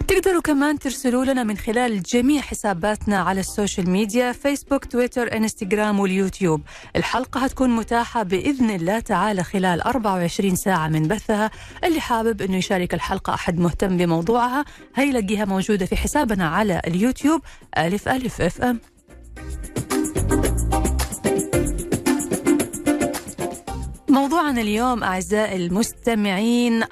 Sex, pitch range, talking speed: female, 185-255 Hz, 105 wpm